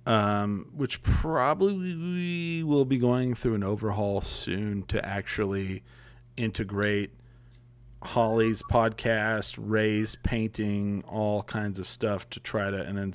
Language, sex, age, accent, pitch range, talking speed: English, male, 40-59, American, 100-120 Hz, 125 wpm